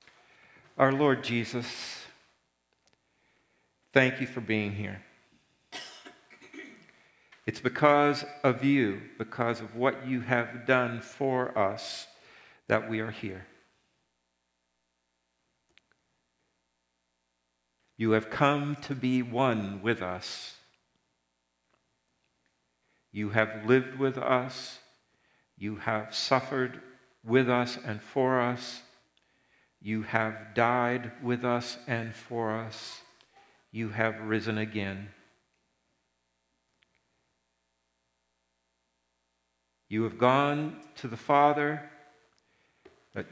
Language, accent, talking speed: English, American, 90 wpm